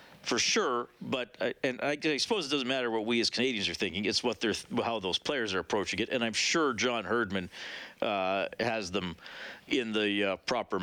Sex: male